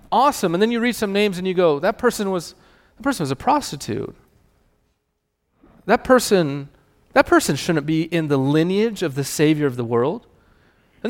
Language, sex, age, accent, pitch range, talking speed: English, male, 30-49, American, 140-210 Hz, 185 wpm